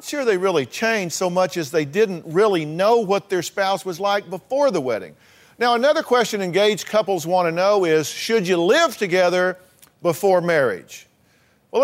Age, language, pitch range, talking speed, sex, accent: 50-69, English, 150-205 Hz, 175 wpm, male, American